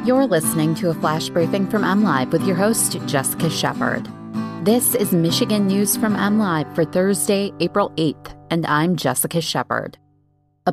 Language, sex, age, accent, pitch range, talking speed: English, female, 30-49, American, 150-185 Hz, 155 wpm